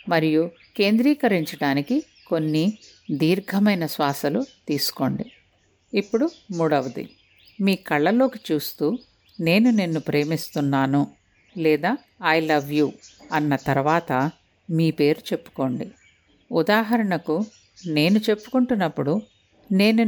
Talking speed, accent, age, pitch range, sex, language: 75 wpm, Indian, 50-69, 150-220 Hz, female, English